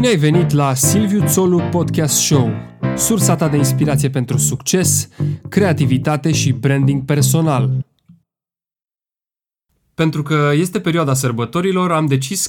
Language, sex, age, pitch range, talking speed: Romanian, male, 20-39, 120-155 Hz, 115 wpm